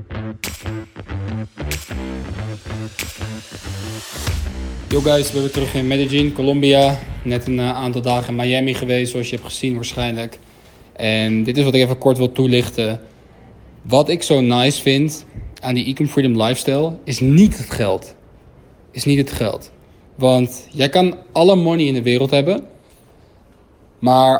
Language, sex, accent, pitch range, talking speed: Dutch, male, Dutch, 110-140 Hz, 145 wpm